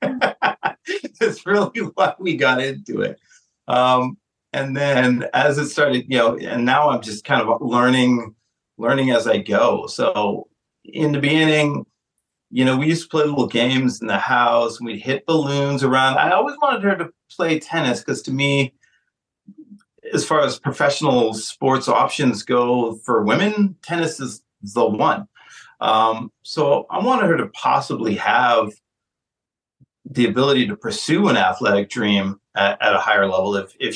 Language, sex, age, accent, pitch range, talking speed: English, male, 40-59, American, 115-160 Hz, 160 wpm